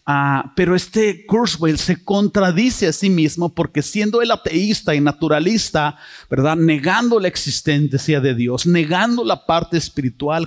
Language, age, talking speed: Spanish, 40-59, 140 wpm